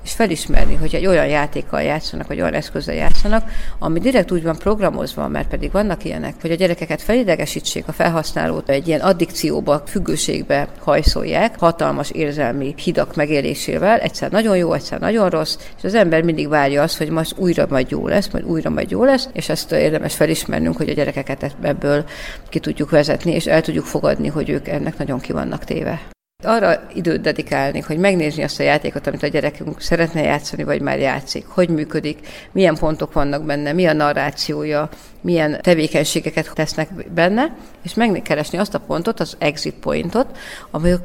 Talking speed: 170 wpm